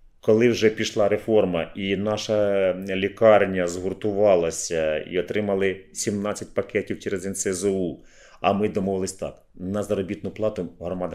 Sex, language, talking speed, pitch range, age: male, Ukrainian, 120 wpm, 95-135 Hz, 30-49